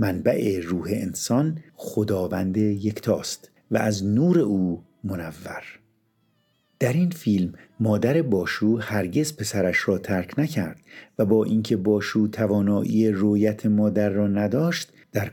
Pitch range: 95-115 Hz